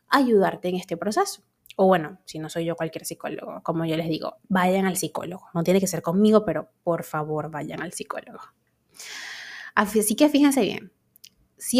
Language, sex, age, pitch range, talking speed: Spanish, female, 20-39, 190-240 Hz, 180 wpm